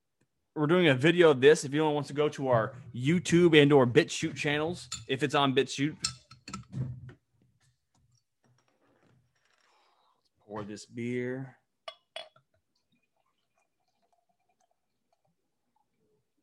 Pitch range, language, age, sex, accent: 125-195 Hz, English, 30-49, male, American